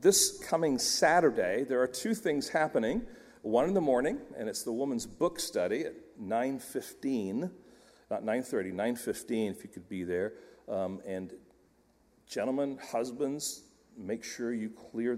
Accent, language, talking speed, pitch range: American, English, 150 wpm, 100-150 Hz